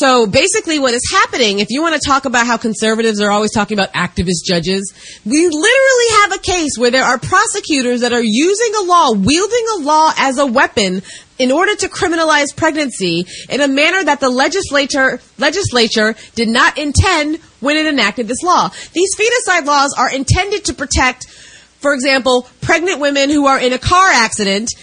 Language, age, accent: English, 30-49, American